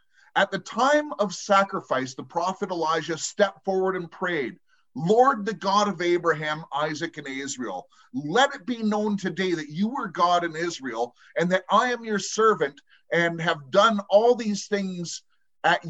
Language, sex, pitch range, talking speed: English, male, 165-220 Hz, 165 wpm